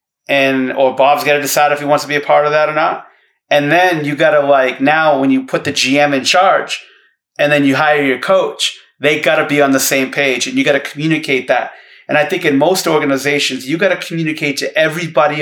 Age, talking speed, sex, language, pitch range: 30-49, 225 wpm, male, English, 140-170 Hz